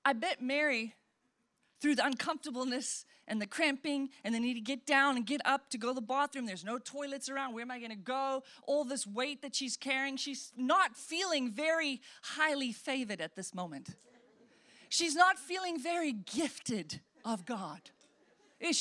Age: 30-49